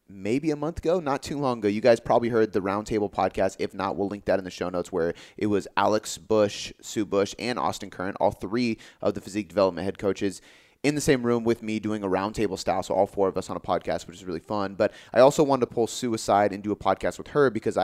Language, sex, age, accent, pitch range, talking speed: English, male, 30-49, American, 100-120 Hz, 270 wpm